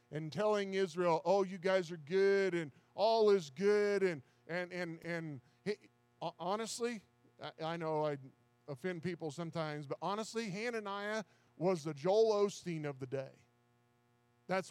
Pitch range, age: 155-200 Hz, 40-59